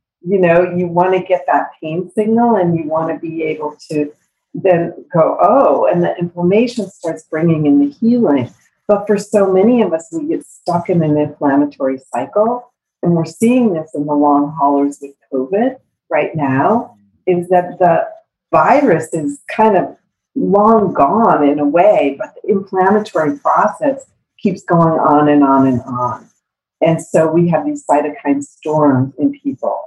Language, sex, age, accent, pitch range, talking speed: English, female, 50-69, American, 150-195 Hz, 170 wpm